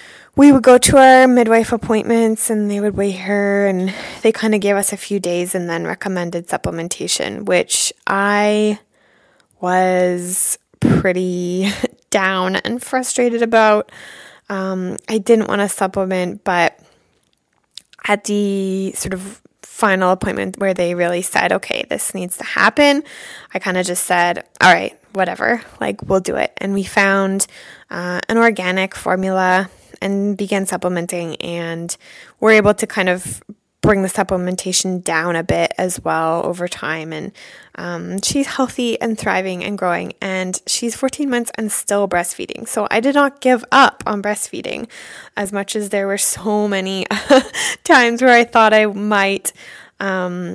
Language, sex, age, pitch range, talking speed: English, female, 20-39, 185-220 Hz, 155 wpm